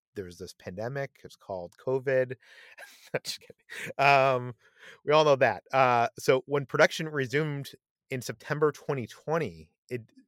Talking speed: 125 wpm